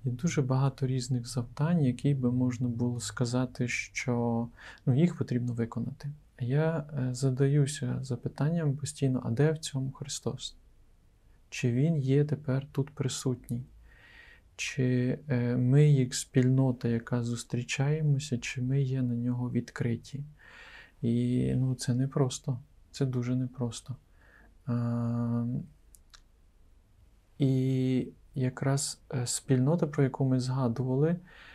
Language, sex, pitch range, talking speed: Ukrainian, male, 125-140 Hz, 105 wpm